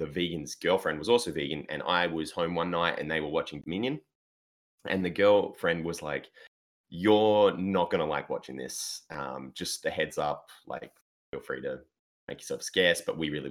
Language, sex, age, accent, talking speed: English, male, 20-39, Australian, 195 wpm